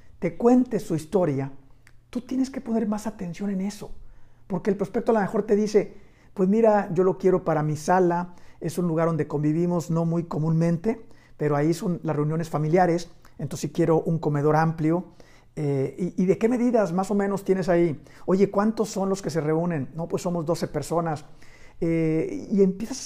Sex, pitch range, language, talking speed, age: male, 155-205 Hz, Spanish, 195 wpm, 50-69